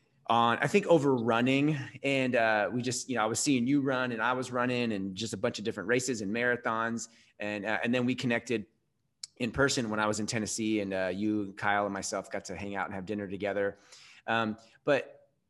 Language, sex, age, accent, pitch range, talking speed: English, male, 30-49, American, 105-125 Hz, 225 wpm